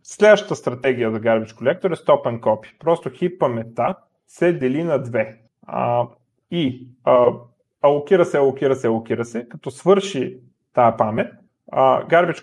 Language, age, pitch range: Bulgarian, 30-49, 120-160 Hz